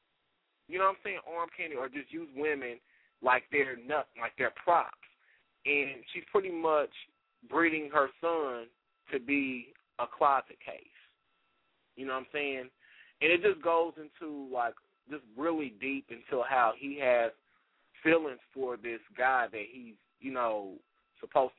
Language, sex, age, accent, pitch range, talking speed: English, male, 20-39, American, 120-165 Hz, 155 wpm